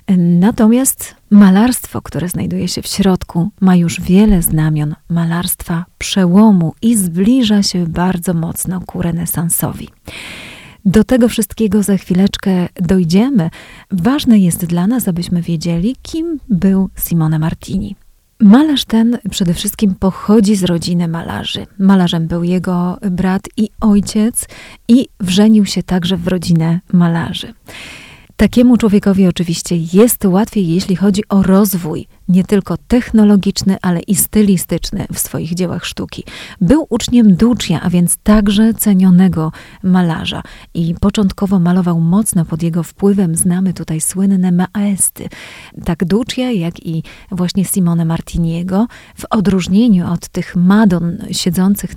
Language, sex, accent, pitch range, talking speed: Polish, female, native, 175-205 Hz, 125 wpm